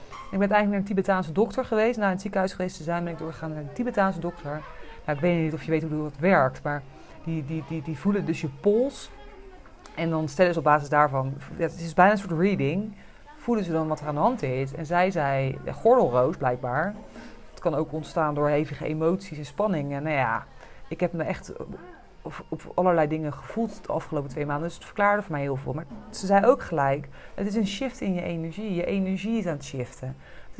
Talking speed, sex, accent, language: 230 wpm, female, Dutch, Dutch